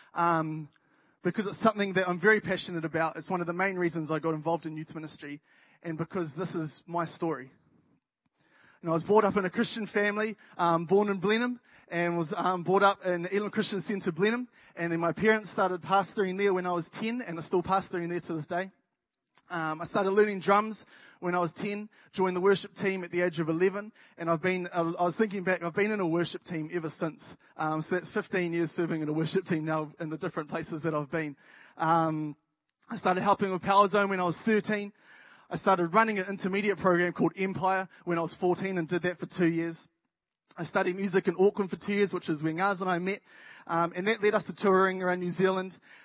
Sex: male